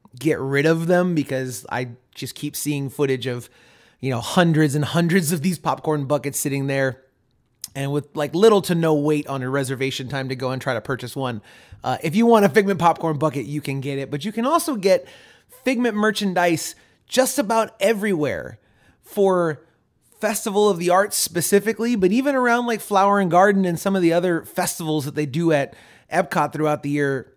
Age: 30-49